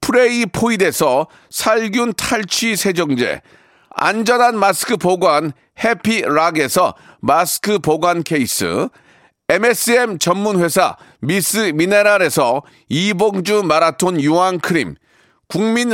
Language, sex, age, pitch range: Korean, male, 40-59, 180-230 Hz